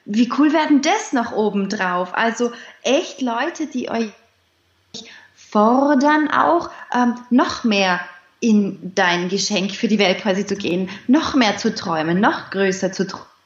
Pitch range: 200-250 Hz